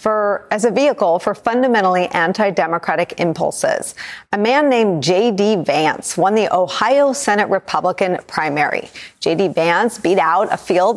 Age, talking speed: 40-59, 135 wpm